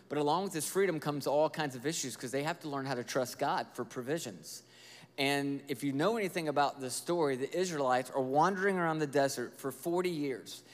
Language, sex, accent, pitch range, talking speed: English, male, American, 140-190 Hz, 220 wpm